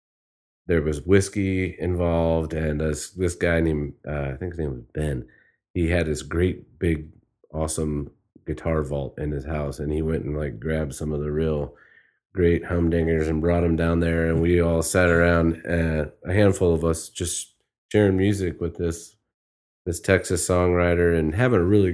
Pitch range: 80-95 Hz